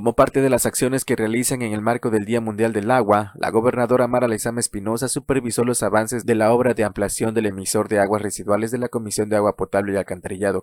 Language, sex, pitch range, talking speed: Spanish, male, 100-120 Hz, 230 wpm